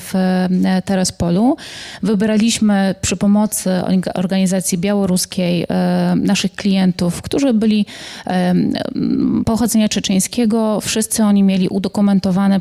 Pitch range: 185-215 Hz